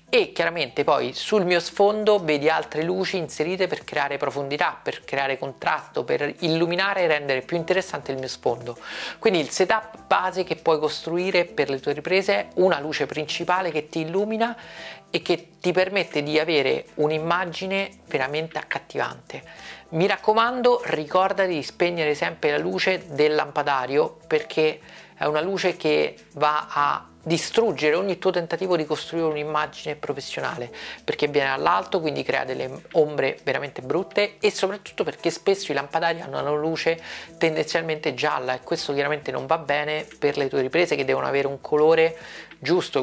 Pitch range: 145-185 Hz